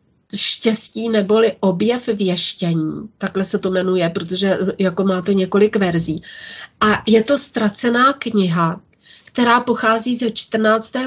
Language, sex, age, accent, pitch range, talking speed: Czech, female, 30-49, native, 195-235 Hz, 125 wpm